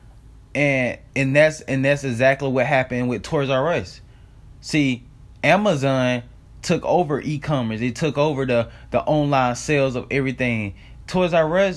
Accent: American